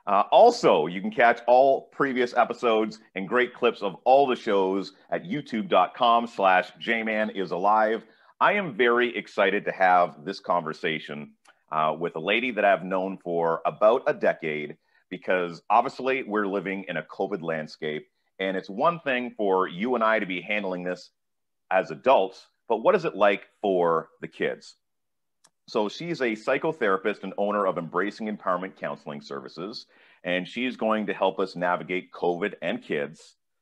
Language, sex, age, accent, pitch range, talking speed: English, male, 40-59, American, 85-115 Hz, 160 wpm